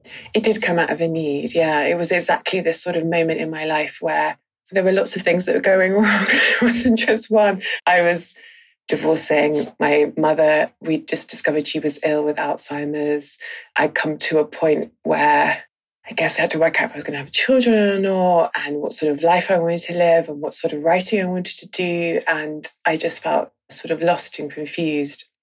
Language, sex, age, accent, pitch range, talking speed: English, female, 20-39, British, 155-185 Hz, 220 wpm